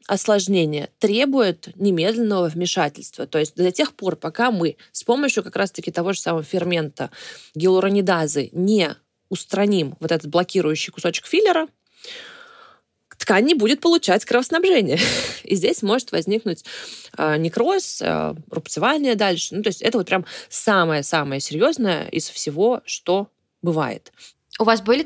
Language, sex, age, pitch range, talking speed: Russian, female, 20-39, 170-240 Hz, 125 wpm